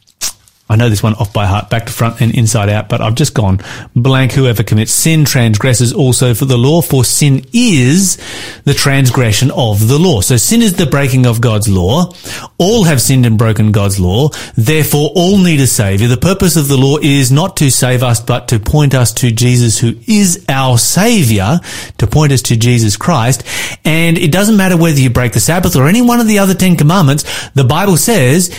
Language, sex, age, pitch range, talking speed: English, male, 30-49, 115-165 Hz, 210 wpm